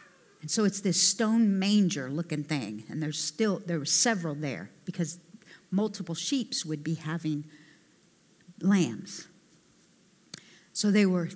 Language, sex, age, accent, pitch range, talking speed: English, female, 50-69, American, 160-195 Hz, 125 wpm